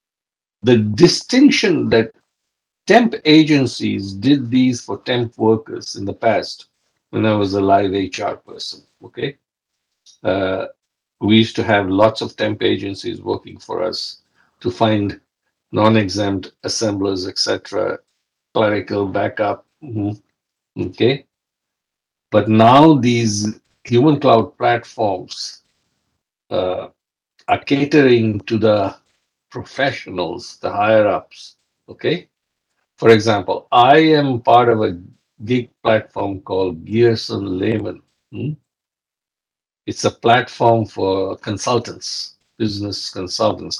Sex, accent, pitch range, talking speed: male, Indian, 100-125 Hz, 105 wpm